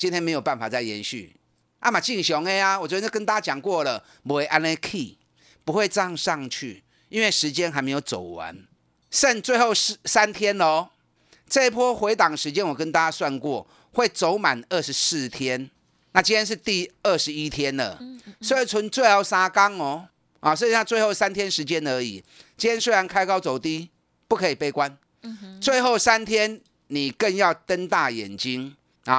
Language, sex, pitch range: Chinese, male, 140-210 Hz